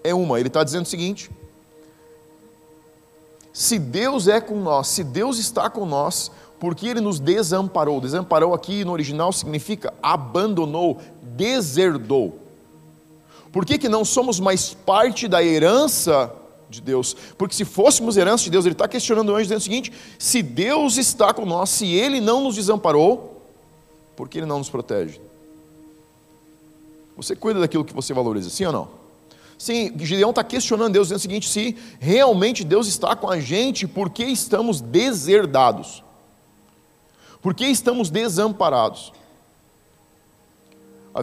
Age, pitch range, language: 40-59, 155-215 Hz, Portuguese